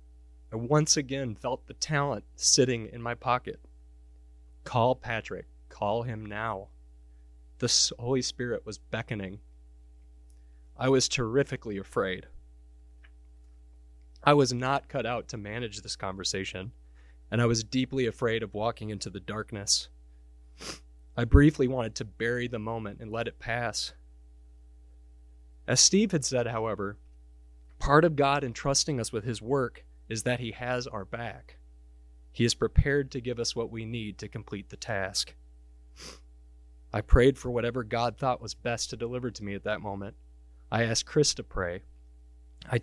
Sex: male